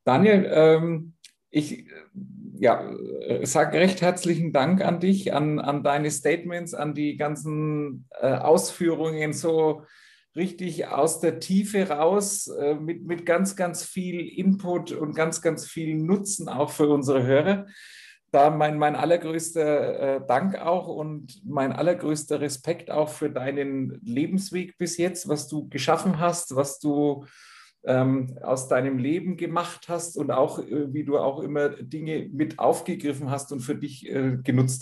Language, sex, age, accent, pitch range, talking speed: German, male, 50-69, German, 135-170 Hz, 135 wpm